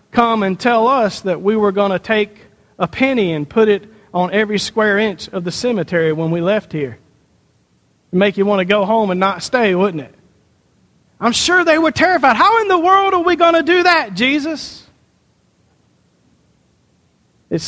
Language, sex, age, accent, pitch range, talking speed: English, male, 40-59, American, 185-250 Hz, 185 wpm